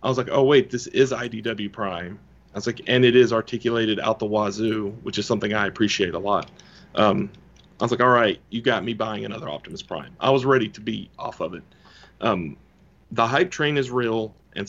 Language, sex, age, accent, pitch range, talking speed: English, male, 30-49, American, 105-130 Hz, 220 wpm